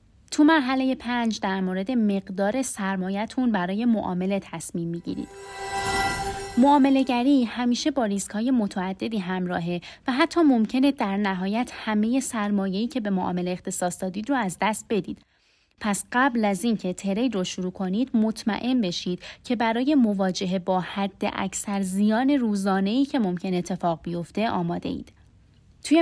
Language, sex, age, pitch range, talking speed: Persian, female, 30-49, 190-235 Hz, 135 wpm